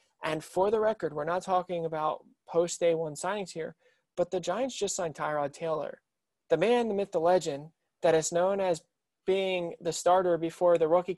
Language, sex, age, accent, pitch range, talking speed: English, male, 20-39, American, 155-180 Hz, 195 wpm